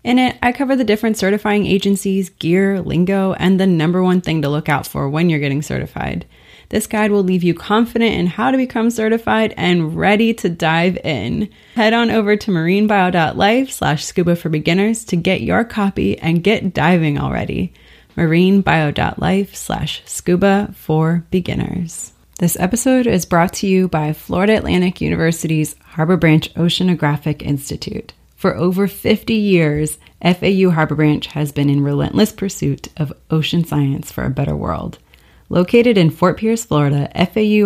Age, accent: 30-49, American